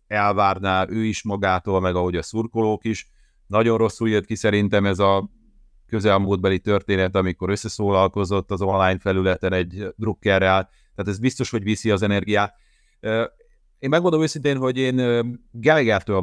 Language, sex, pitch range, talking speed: Hungarian, male, 95-115 Hz, 140 wpm